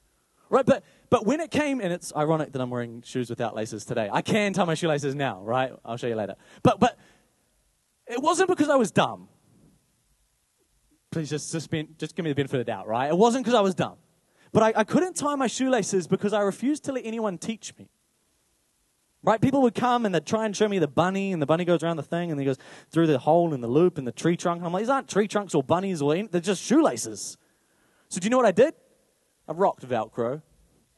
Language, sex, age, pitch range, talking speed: English, male, 20-39, 125-215 Hz, 240 wpm